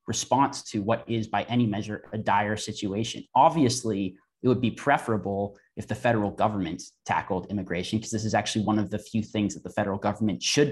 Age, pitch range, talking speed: 30-49, 105-125 Hz, 195 wpm